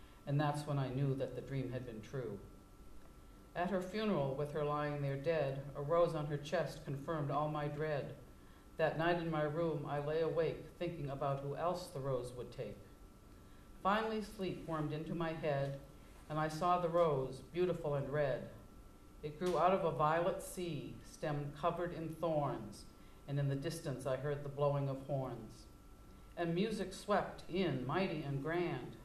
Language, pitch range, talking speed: English, 135-165 Hz, 180 wpm